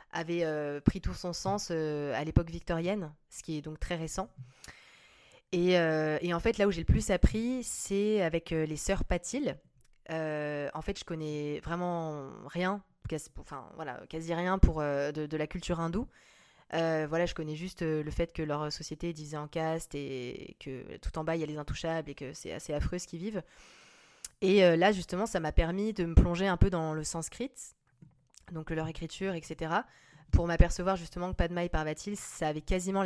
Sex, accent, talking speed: female, French, 205 wpm